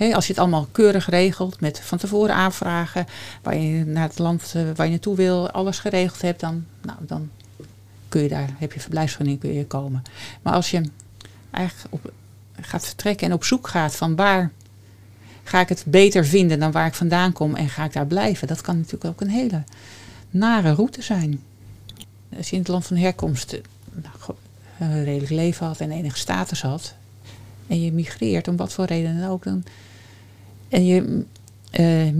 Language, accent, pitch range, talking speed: Dutch, Dutch, 145-190 Hz, 180 wpm